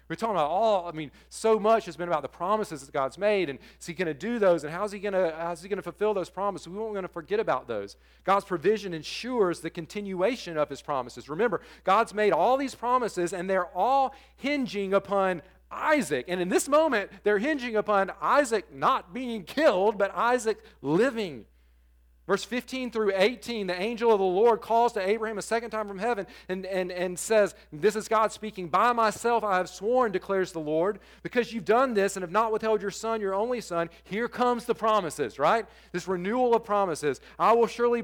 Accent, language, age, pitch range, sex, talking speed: American, English, 40-59, 180-225 Hz, male, 210 wpm